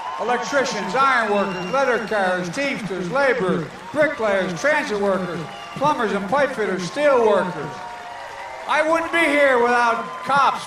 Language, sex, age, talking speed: English, male, 60-79, 125 wpm